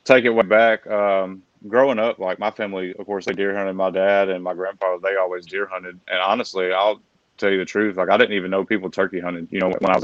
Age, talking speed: 20-39, 265 wpm